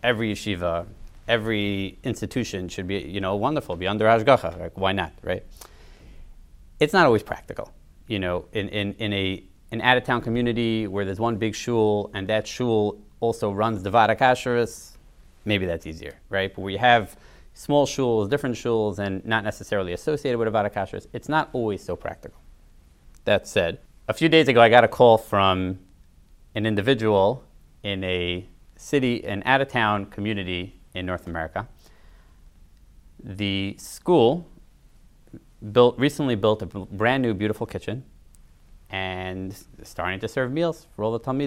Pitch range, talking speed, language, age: 90-120 Hz, 150 wpm, English, 30-49